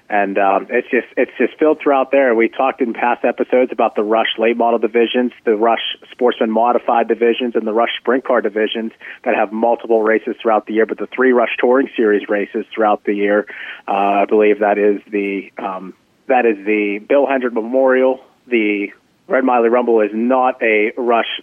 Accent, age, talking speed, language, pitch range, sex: American, 30-49, 195 wpm, English, 105-120 Hz, male